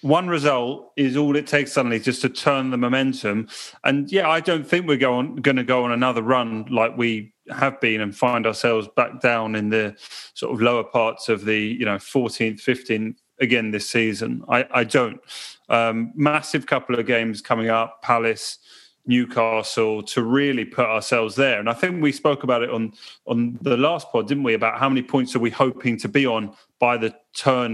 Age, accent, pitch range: 30-49, British, 115-140 Hz